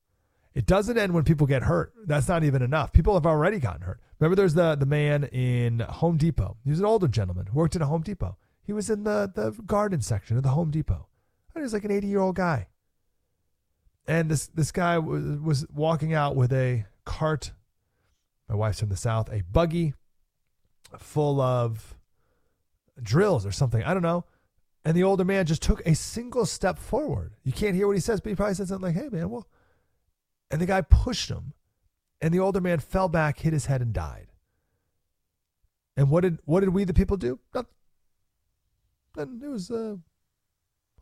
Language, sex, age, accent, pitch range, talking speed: English, male, 30-49, American, 105-170 Hz, 195 wpm